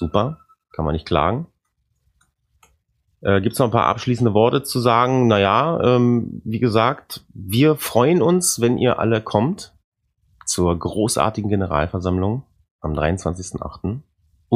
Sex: male